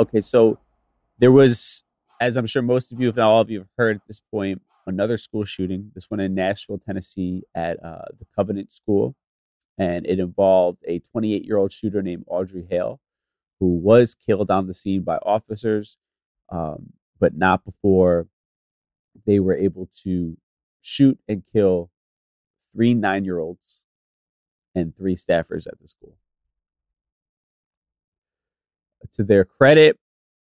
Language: English